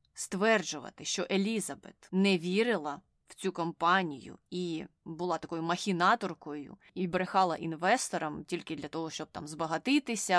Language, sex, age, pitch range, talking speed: Ukrainian, female, 20-39, 165-205 Hz, 120 wpm